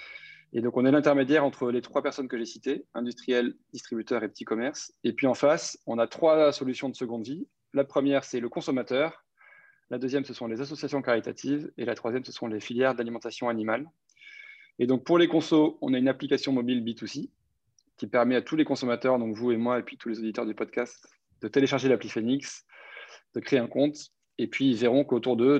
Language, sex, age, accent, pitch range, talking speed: French, male, 20-39, French, 115-140 Hz, 215 wpm